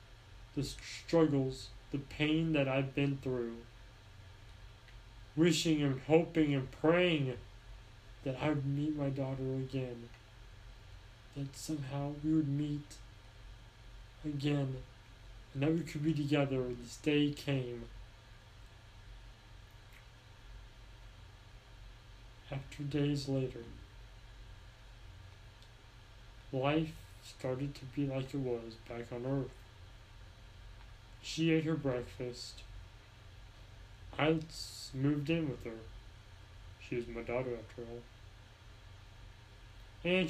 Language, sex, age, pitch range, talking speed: English, male, 30-49, 105-145 Hz, 95 wpm